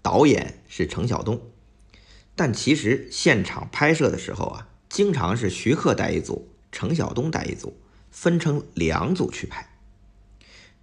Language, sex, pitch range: Chinese, male, 100-130 Hz